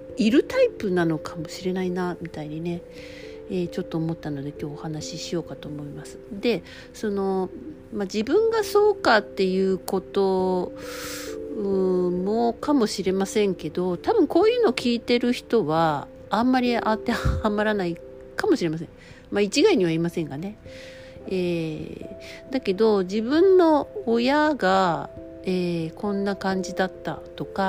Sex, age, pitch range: female, 50-69, 165-245 Hz